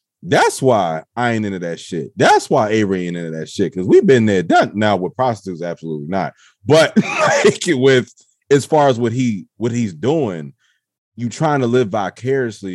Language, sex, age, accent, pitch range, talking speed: English, male, 30-49, American, 80-120 Hz, 185 wpm